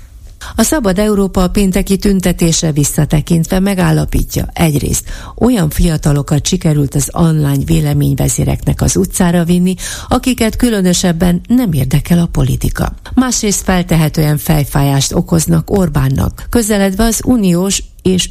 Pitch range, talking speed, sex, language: 140-195 Hz, 105 wpm, female, Hungarian